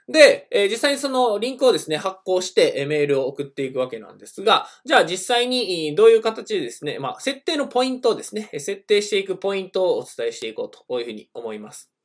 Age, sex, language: 20-39, male, Japanese